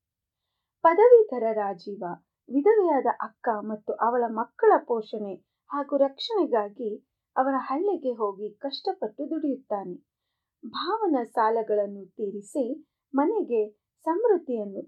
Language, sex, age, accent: Kannada, female, 30-49, native